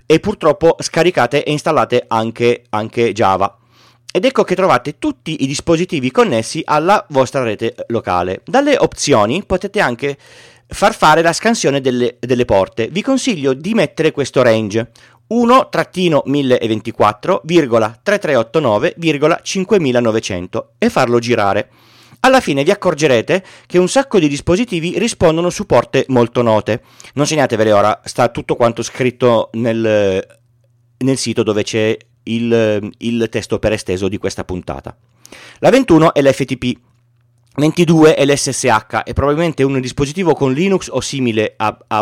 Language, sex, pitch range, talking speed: Italian, male, 115-165 Hz, 130 wpm